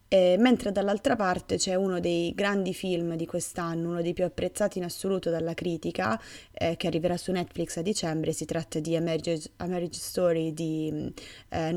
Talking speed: 185 wpm